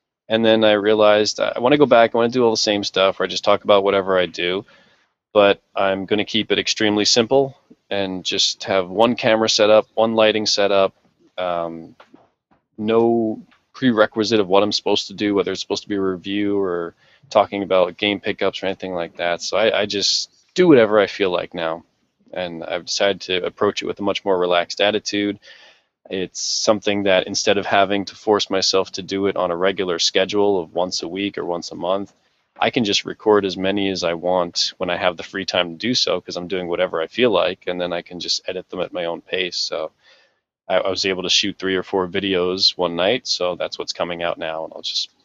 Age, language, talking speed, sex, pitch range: 20-39, English, 230 wpm, male, 90-105 Hz